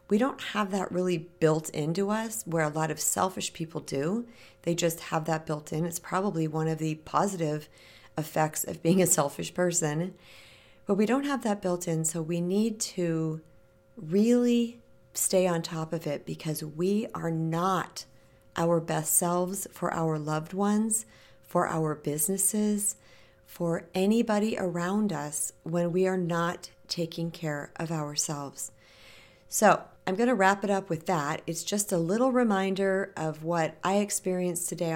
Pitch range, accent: 155-200 Hz, American